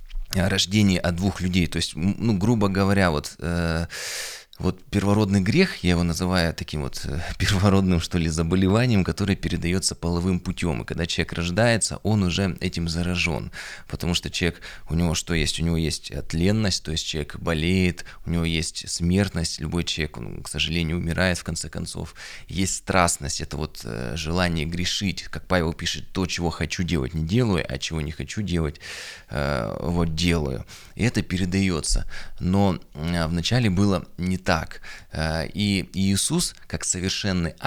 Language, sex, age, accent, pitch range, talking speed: Russian, male, 20-39, native, 80-95 Hz, 160 wpm